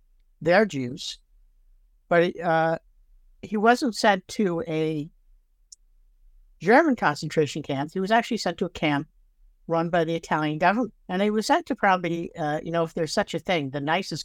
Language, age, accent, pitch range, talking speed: English, 60-79, American, 145-195 Hz, 170 wpm